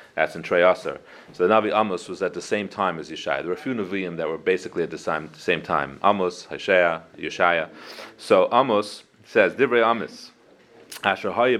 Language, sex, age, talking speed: English, male, 30-49, 185 wpm